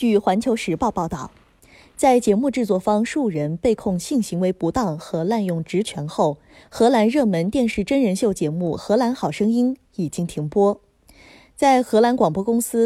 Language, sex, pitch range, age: Chinese, female, 165-230 Hz, 20-39